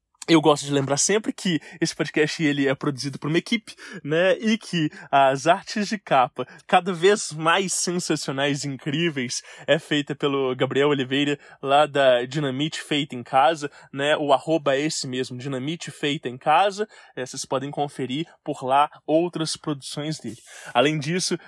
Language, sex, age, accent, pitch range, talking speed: English, male, 20-39, Brazilian, 140-175 Hz, 165 wpm